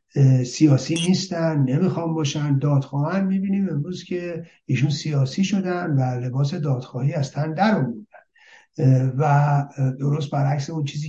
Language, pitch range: Persian, 135-160 Hz